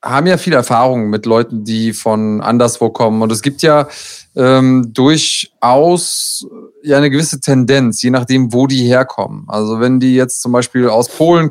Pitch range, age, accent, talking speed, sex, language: 125-145 Hz, 30-49, German, 175 wpm, male, German